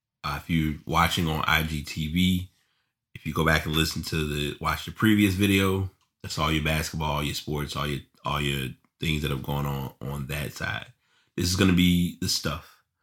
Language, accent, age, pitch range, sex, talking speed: English, American, 30-49, 75-90 Hz, male, 205 wpm